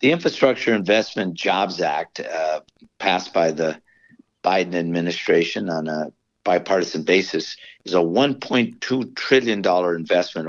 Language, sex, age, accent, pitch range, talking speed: English, male, 50-69, American, 90-115 Hz, 115 wpm